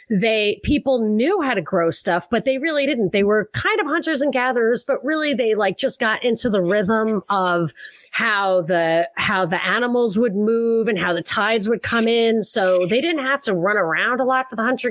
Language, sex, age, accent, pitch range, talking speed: English, female, 30-49, American, 185-235 Hz, 215 wpm